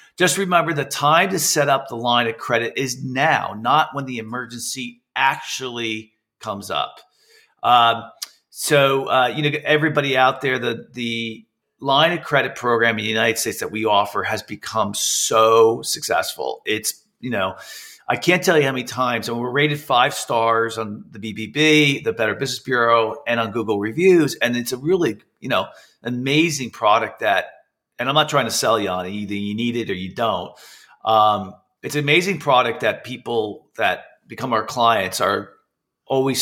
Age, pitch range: 40-59, 110-150 Hz